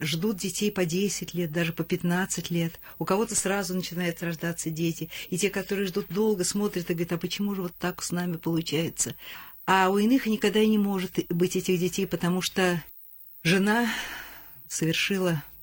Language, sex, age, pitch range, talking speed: Russian, female, 50-69, 160-200 Hz, 175 wpm